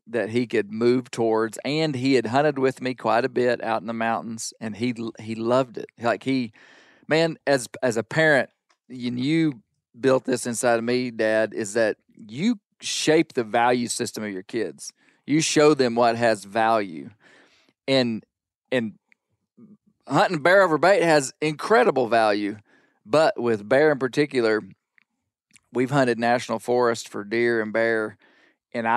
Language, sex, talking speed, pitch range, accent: English, male, 160 wpm, 115-135 Hz, American